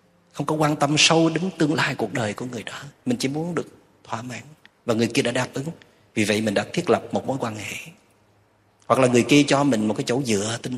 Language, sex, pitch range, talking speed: Vietnamese, male, 105-130 Hz, 255 wpm